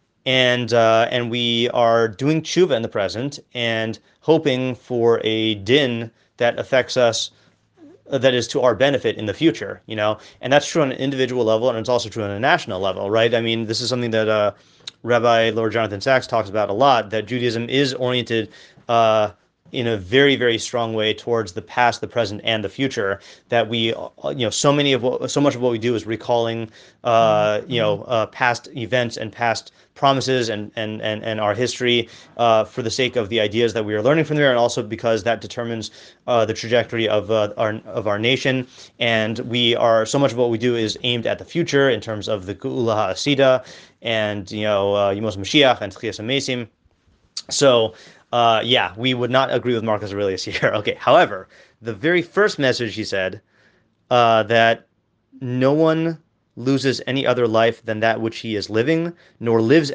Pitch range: 110-125 Hz